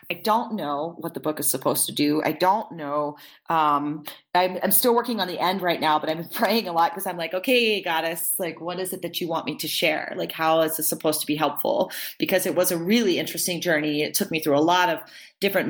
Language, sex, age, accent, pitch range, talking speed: English, female, 30-49, American, 155-195 Hz, 250 wpm